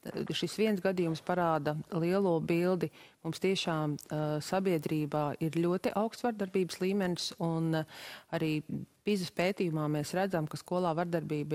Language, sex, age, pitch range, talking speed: English, female, 30-49, 155-195 Hz, 125 wpm